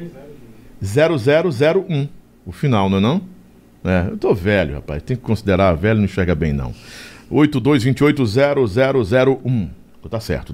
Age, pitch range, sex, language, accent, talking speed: 50-69, 105-145 Hz, male, Portuguese, Brazilian, 125 wpm